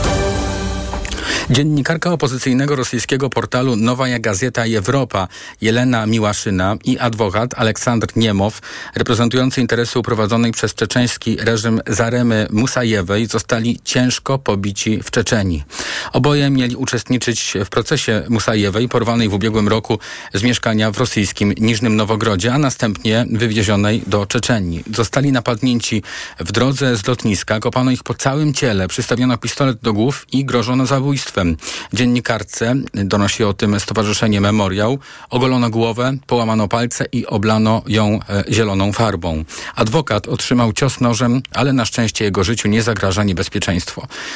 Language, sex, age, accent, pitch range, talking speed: Polish, male, 40-59, native, 105-125 Hz, 125 wpm